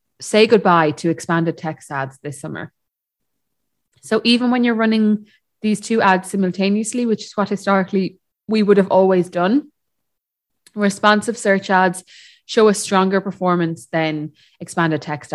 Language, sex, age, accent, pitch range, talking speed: English, female, 20-39, Irish, 155-210 Hz, 140 wpm